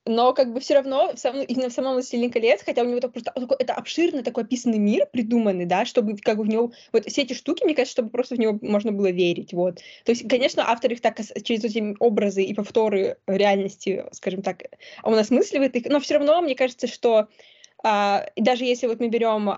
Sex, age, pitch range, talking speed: female, 20-39, 210-255 Hz, 220 wpm